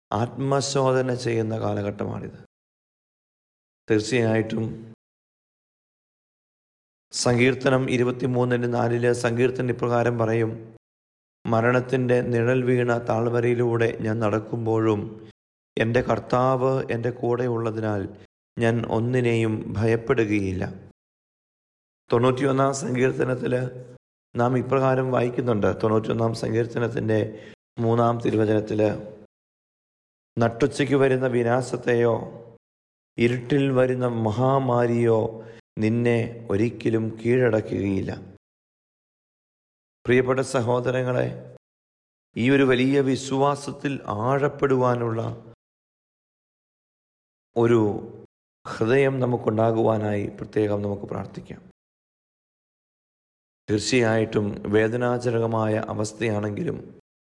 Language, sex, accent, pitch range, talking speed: Malayalam, male, native, 110-125 Hz, 60 wpm